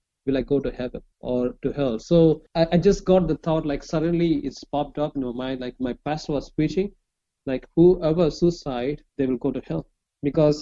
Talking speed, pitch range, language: 210 wpm, 135-165 Hz, English